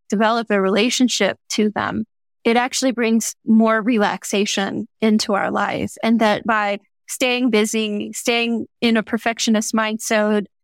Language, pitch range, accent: English, 200-230 Hz, American